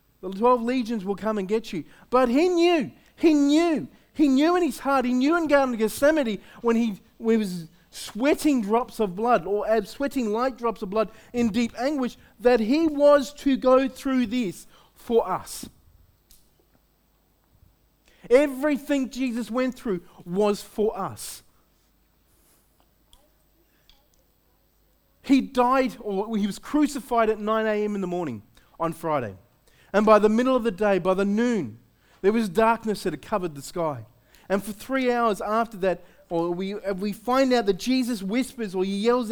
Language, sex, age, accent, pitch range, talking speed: English, male, 30-49, Australian, 185-255 Hz, 165 wpm